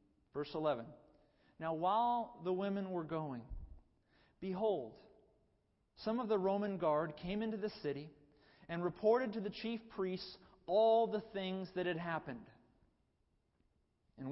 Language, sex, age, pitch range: English, male, 40-59, 145-210 Hz